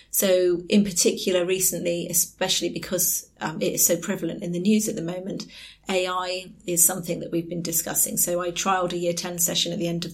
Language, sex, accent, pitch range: English, female, British, 175-195 Hz